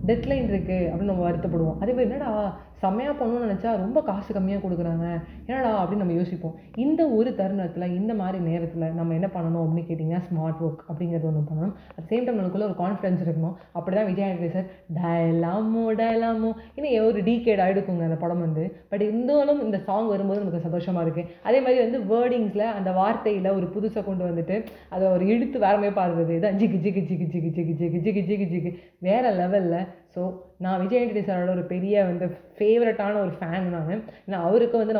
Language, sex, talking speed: Tamil, female, 160 wpm